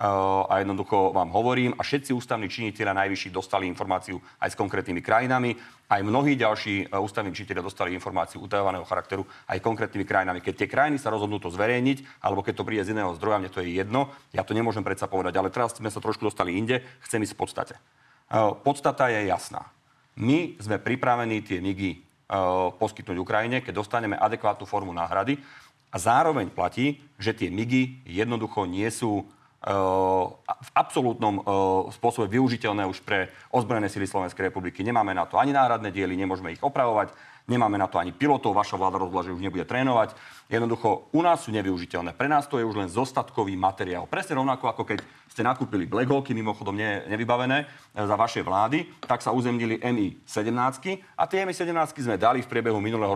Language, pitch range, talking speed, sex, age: Slovak, 95-125 Hz, 175 wpm, male, 40-59